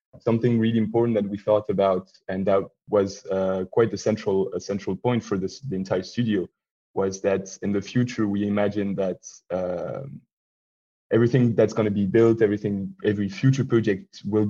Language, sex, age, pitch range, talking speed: English, male, 20-39, 95-110 Hz, 180 wpm